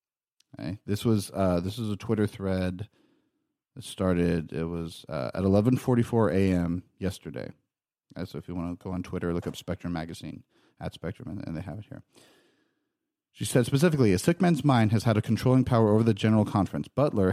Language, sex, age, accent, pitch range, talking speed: English, male, 40-59, American, 95-120 Hz, 185 wpm